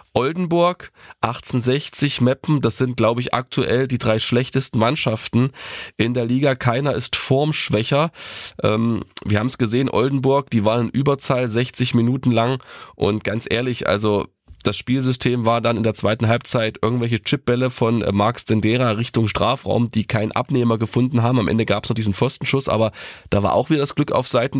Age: 20-39